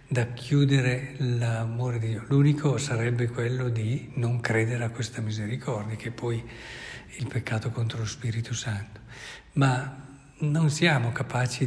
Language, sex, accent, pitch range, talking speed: Italian, male, native, 120-145 Hz, 140 wpm